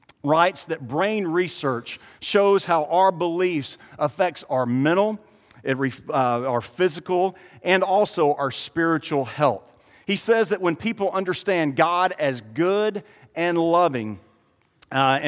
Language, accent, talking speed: English, American, 120 wpm